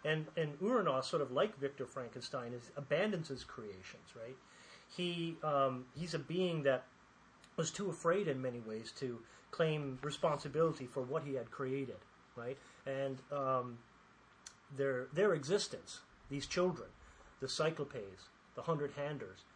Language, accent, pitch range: English, American, 130-165 Hz